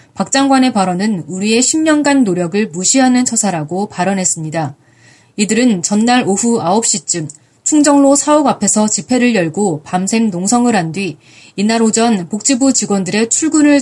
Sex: female